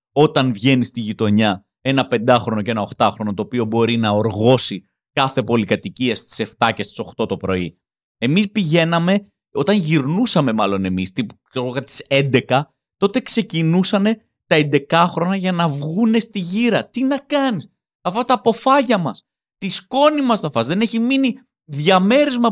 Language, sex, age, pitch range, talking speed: Greek, male, 30-49, 125-205 Hz, 155 wpm